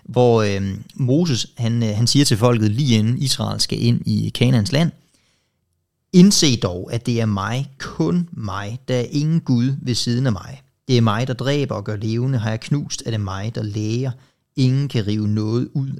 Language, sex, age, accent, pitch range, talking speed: Danish, male, 30-49, native, 110-135 Hz, 200 wpm